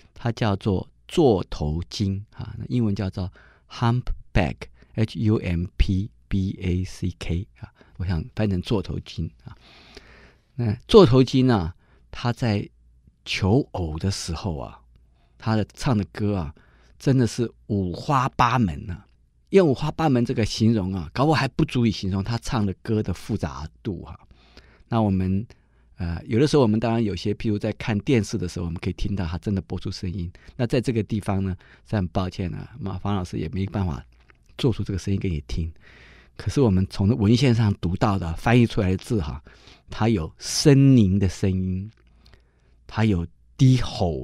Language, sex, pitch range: Chinese, male, 85-110 Hz